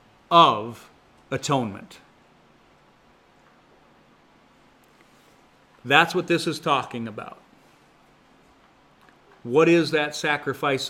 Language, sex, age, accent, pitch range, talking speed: English, male, 40-59, American, 130-170 Hz, 65 wpm